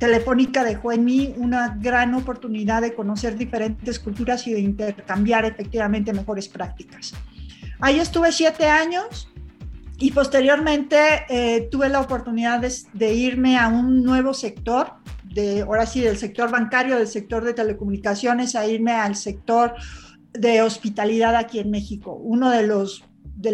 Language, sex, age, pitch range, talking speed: Spanish, female, 50-69, 215-255 Hz, 145 wpm